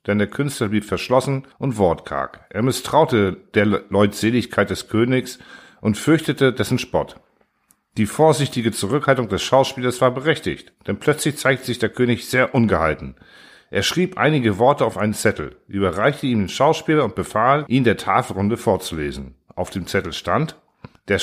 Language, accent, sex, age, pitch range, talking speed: German, German, male, 50-69, 100-135 Hz, 155 wpm